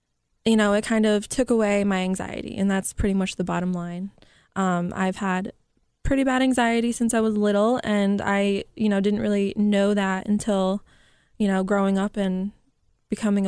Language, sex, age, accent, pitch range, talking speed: English, female, 20-39, American, 190-220 Hz, 185 wpm